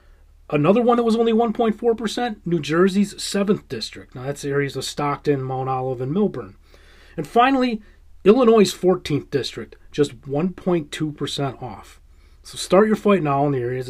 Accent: American